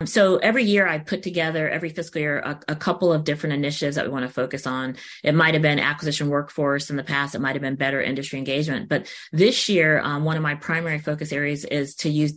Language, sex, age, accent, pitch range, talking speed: English, female, 30-49, American, 145-170 Hz, 245 wpm